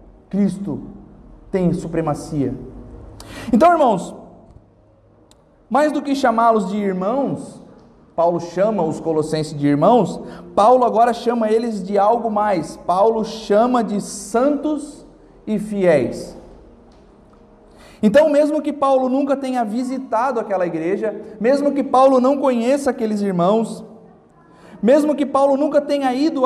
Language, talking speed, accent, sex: Portuguese, 120 wpm, Brazilian, male